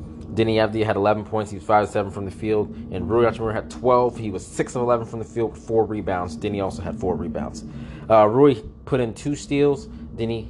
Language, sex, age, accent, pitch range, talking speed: English, male, 20-39, American, 85-115 Hz, 230 wpm